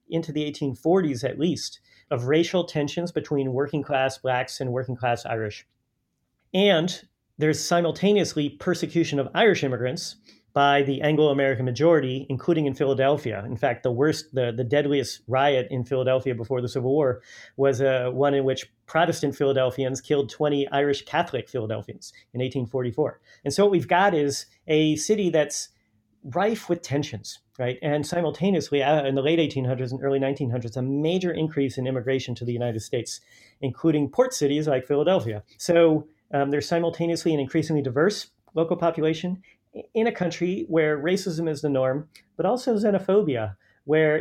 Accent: American